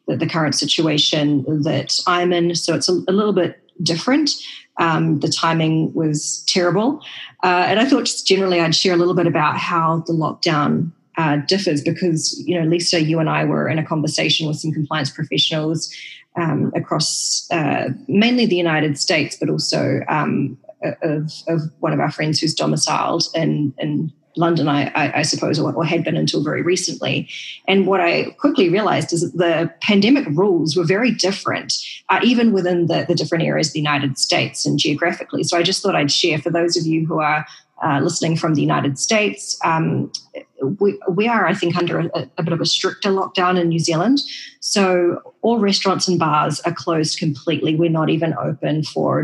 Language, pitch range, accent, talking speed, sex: English, 155-180 Hz, Australian, 190 wpm, female